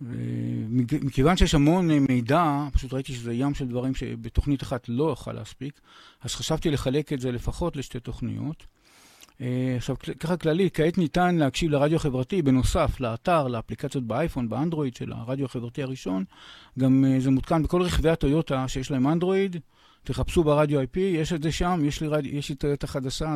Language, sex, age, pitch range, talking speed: Hebrew, male, 50-69, 125-160 Hz, 160 wpm